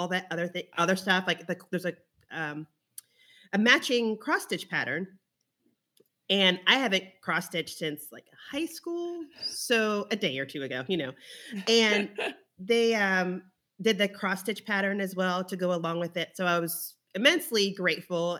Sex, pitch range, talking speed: female, 175-225 Hz, 175 wpm